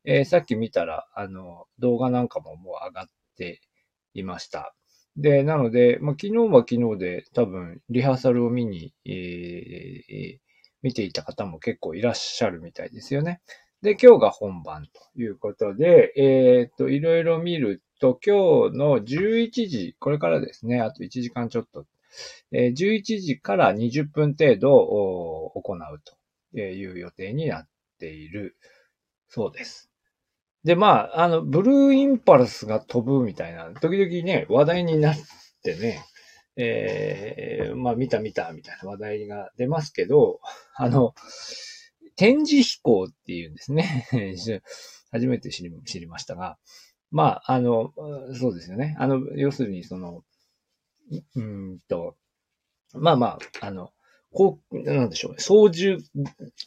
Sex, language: male, Japanese